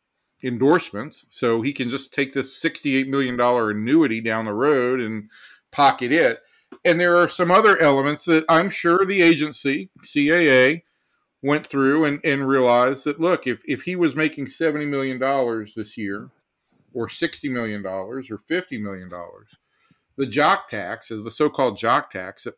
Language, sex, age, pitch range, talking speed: English, male, 50-69, 115-150 Hz, 160 wpm